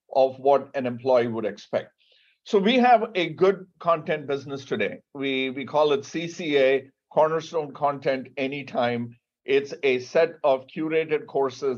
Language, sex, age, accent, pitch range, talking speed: English, male, 50-69, Indian, 130-170 Hz, 145 wpm